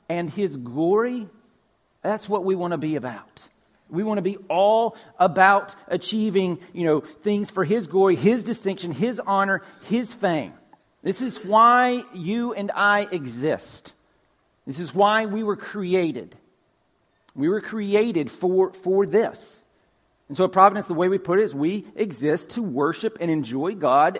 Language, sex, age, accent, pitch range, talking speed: English, male, 40-59, American, 155-210 Hz, 160 wpm